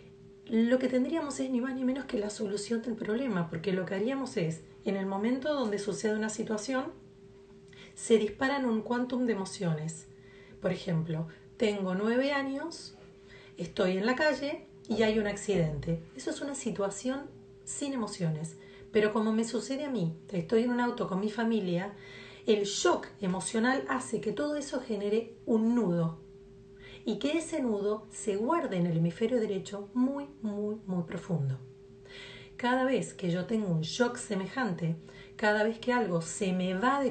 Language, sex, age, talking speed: Spanish, female, 40-59, 165 wpm